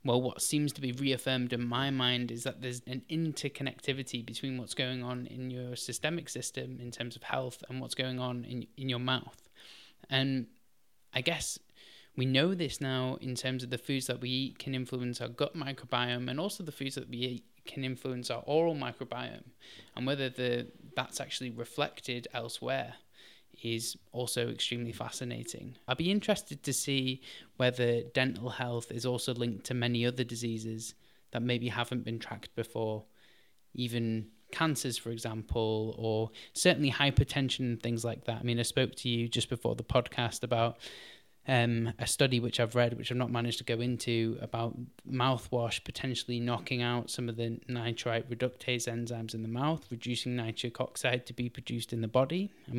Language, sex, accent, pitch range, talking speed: English, male, British, 115-130 Hz, 180 wpm